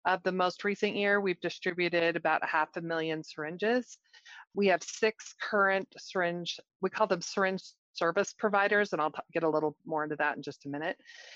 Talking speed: 190 wpm